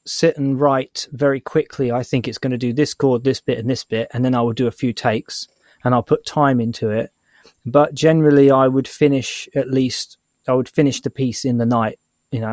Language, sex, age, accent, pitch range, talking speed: English, male, 20-39, British, 115-135 Hz, 230 wpm